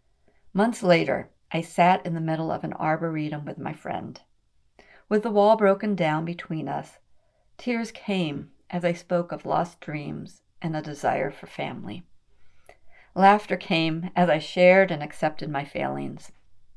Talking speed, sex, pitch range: 150 wpm, female, 150-185 Hz